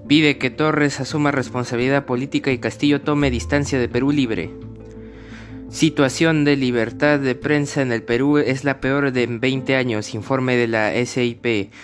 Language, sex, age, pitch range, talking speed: Spanish, male, 20-39, 115-135 Hz, 155 wpm